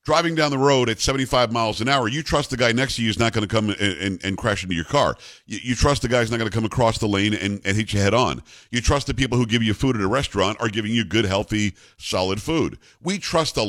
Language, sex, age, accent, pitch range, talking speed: English, male, 50-69, American, 110-155 Hz, 290 wpm